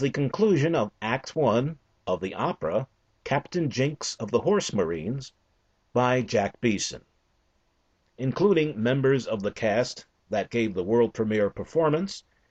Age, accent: 50-69, American